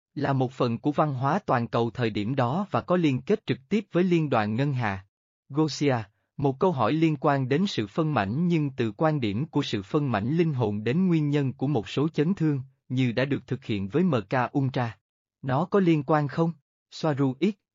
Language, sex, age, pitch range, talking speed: Vietnamese, male, 20-39, 115-160 Hz, 215 wpm